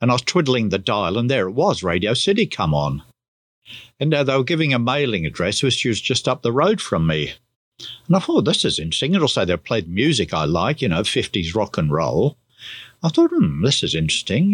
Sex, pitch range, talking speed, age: male, 110-160 Hz, 225 wpm, 60-79